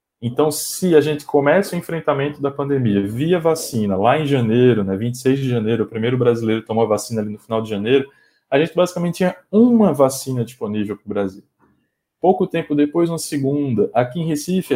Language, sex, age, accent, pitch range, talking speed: Portuguese, male, 20-39, Brazilian, 115-155 Hz, 190 wpm